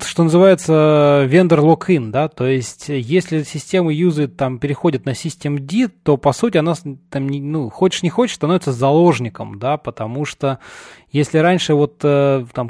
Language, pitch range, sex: Russian, 125-160 Hz, male